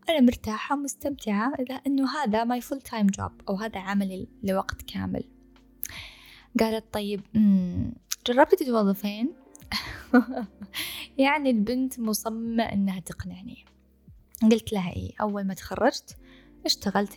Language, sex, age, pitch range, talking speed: Arabic, female, 10-29, 200-265 Hz, 100 wpm